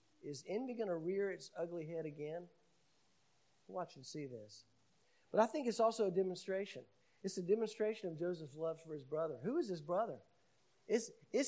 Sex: male